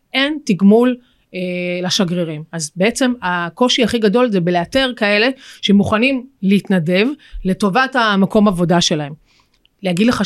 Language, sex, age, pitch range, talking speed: Hebrew, female, 30-49, 180-230 Hz, 115 wpm